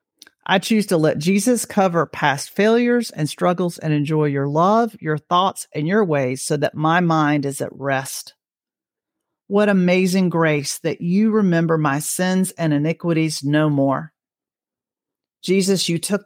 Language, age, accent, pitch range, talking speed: English, 40-59, American, 155-195 Hz, 150 wpm